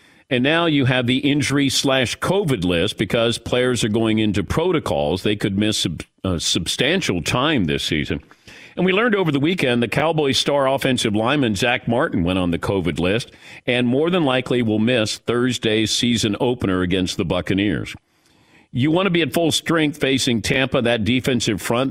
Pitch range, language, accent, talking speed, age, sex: 105-135 Hz, English, American, 170 wpm, 50-69, male